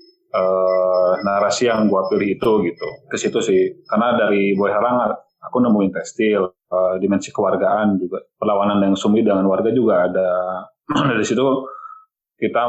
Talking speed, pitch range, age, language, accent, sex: 140 wpm, 95-110 Hz, 20-39, Indonesian, native, male